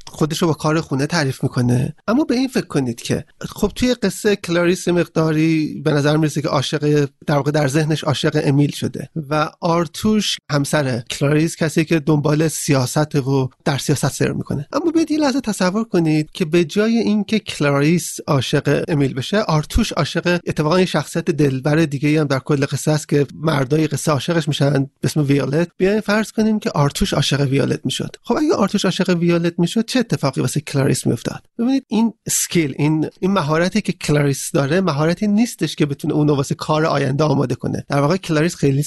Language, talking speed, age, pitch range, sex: Persian, 175 wpm, 30-49, 145-180 Hz, male